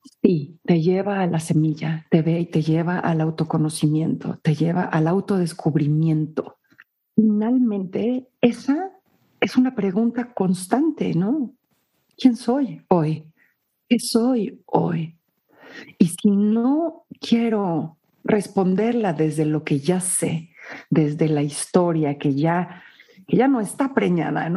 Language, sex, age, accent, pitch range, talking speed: Spanish, female, 50-69, Mexican, 165-235 Hz, 120 wpm